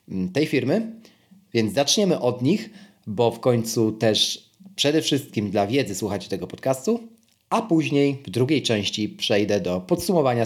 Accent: native